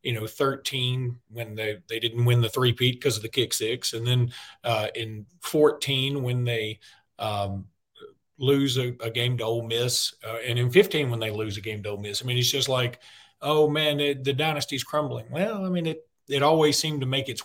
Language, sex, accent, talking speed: English, male, American, 215 wpm